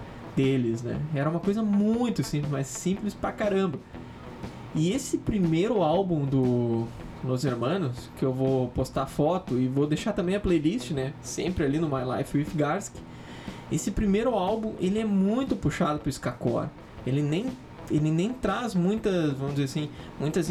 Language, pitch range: Portuguese, 135-190 Hz